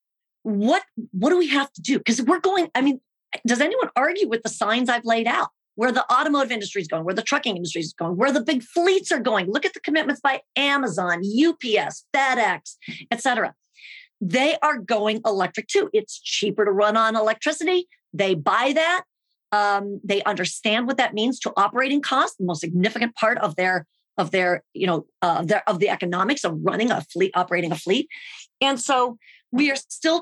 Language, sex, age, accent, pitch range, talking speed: English, female, 40-59, American, 190-275 Hz, 195 wpm